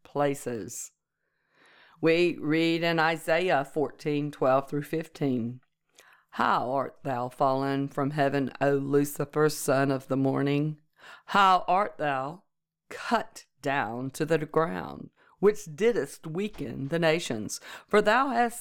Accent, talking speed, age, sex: American, 115 wpm, 50-69, female